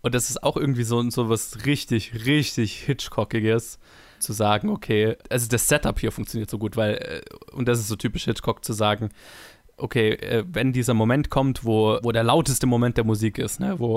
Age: 20-39